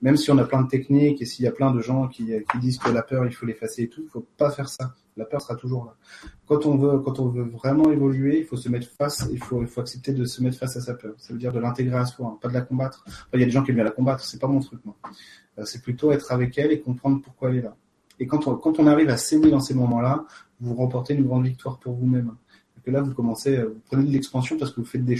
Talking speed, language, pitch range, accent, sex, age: 315 wpm, French, 120-135 Hz, French, male, 30-49